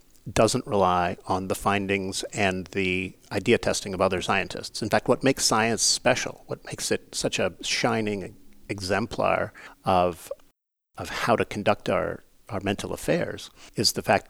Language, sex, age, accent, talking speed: English, male, 50-69, American, 155 wpm